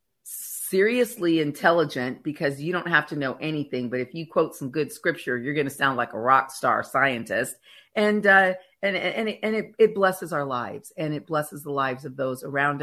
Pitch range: 135-160 Hz